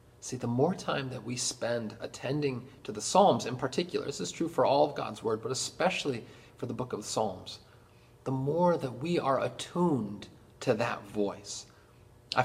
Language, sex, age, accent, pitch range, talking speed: English, male, 40-59, American, 110-140 Hz, 185 wpm